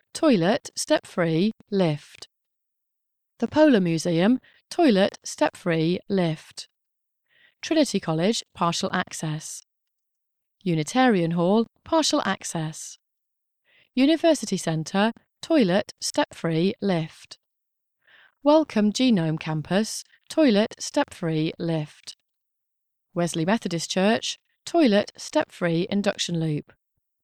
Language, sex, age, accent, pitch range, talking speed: English, female, 30-49, British, 170-255 Hz, 90 wpm